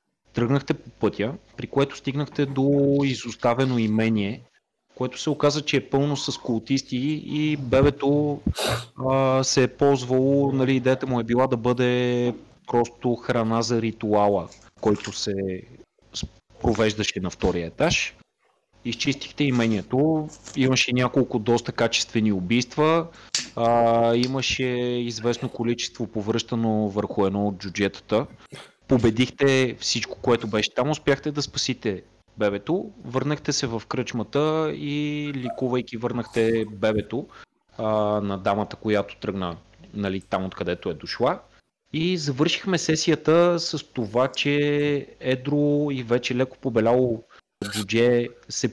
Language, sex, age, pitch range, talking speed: Bulgarian, male, 30-49, 110-140 Hz, 115 wpm